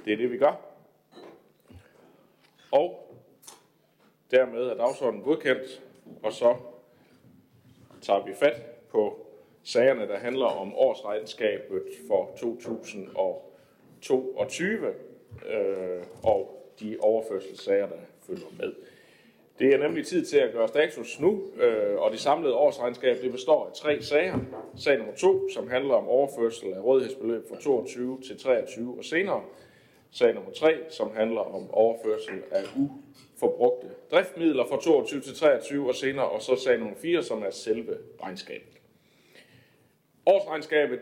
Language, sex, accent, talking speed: Danish, male, native, 130 wpm